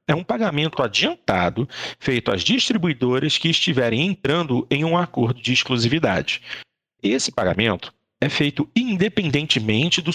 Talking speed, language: 125 wpm, Portuguese